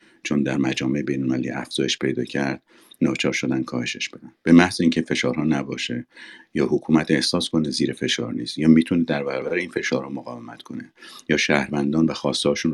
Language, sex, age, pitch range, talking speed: Persian, male, 50-69, 75-95 Hz, 165 wpm